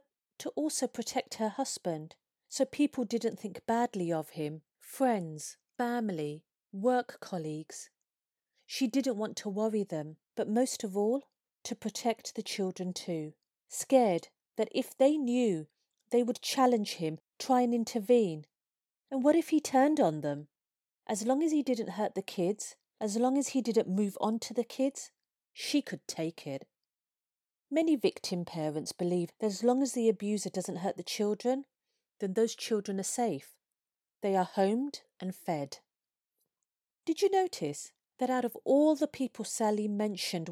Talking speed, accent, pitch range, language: 160 wpm, British, 180-250 Hz, English